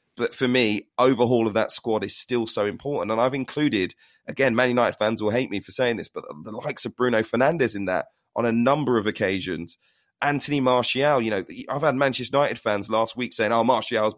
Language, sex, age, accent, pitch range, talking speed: English, male, 30-49, British, 110-135 Hz, 215 wpm